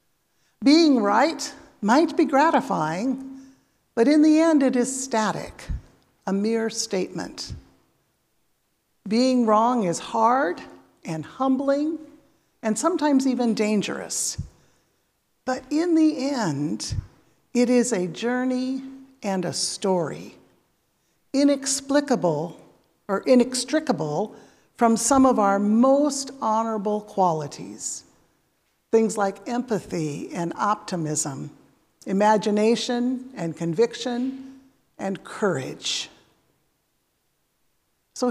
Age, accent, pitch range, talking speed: 60-79, American, 190-265 Hz, 90 wpm